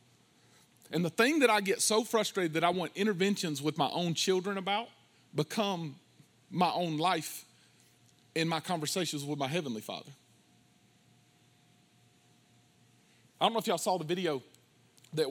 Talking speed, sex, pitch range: 145 wpm, male, 135-170 Hz